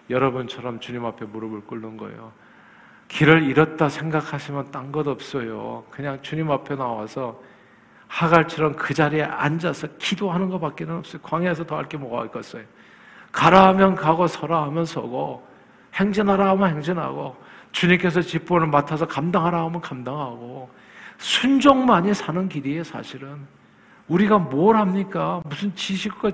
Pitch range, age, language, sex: 150-205 Hz, 50-69, Korean, male